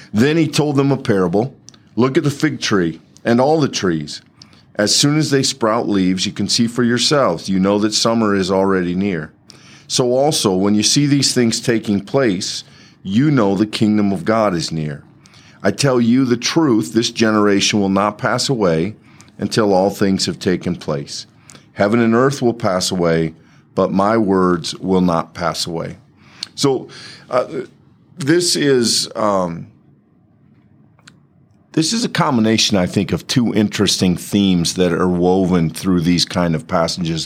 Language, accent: English, American